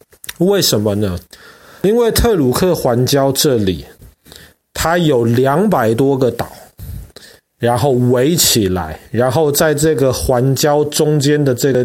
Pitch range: 115-150 Hz